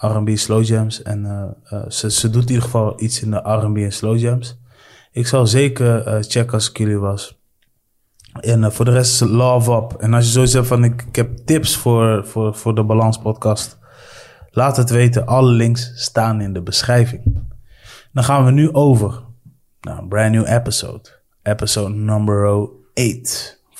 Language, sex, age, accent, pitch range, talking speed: Dutch, male, 20-39, Dutch, 105-120 Hz, 185 wpm